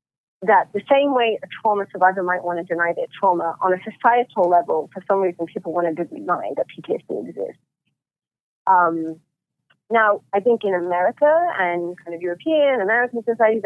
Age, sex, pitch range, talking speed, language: 30-49, female, 165-200 Hz, 175 wpm, English